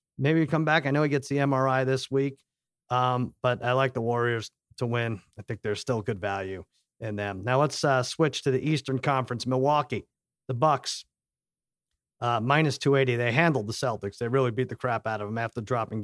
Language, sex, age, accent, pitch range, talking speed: English, male, 40-59, American, 125-160 Hz, 210 wpm